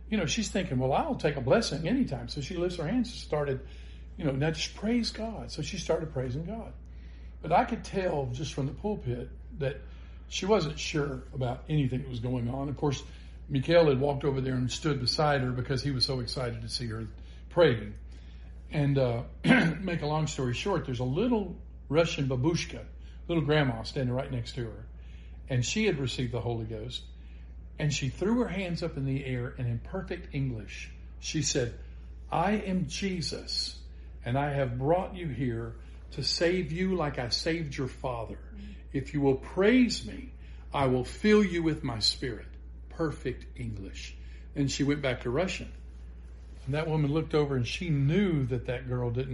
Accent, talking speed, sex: American, 190 wpm, male